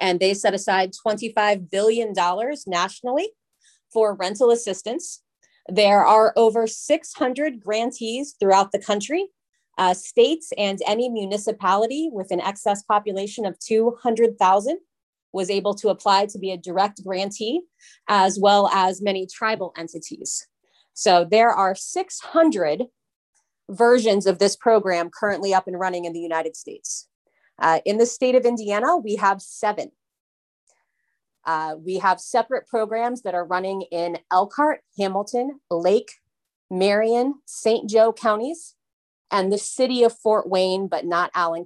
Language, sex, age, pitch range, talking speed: English, female, 30-49, 185-230 Hz, 135 wpm